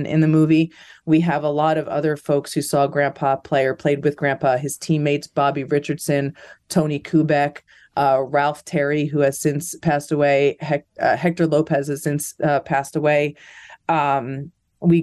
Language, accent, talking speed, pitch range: English, American, 170 wpm, 140-155 Hz